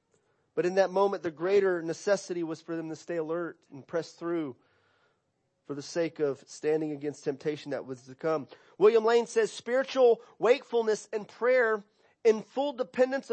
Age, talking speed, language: 30-49, 165 wpm, English